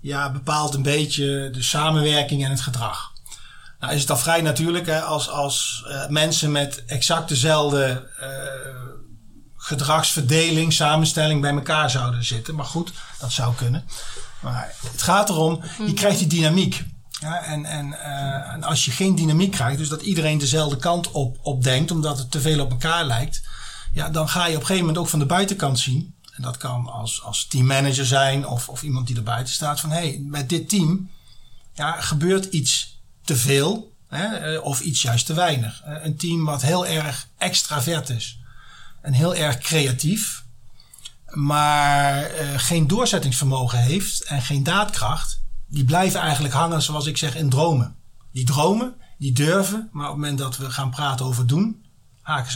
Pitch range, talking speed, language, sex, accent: 130-160 Hz, 175 wpm, Dutch, male, Dutch